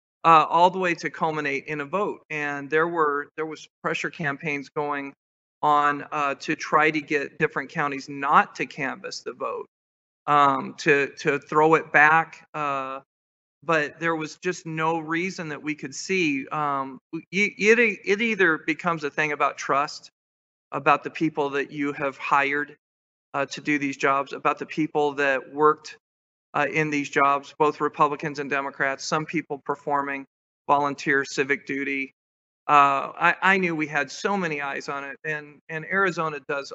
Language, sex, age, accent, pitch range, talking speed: English, male, 40-59, American, 140-165 Hz, 165 wpm